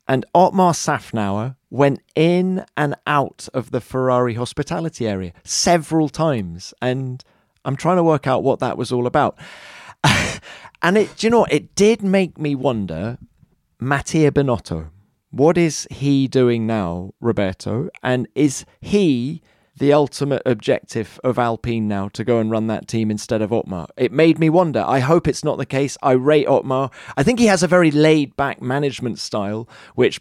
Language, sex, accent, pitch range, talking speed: English, male, British, 115-145 Hz, 165 wpm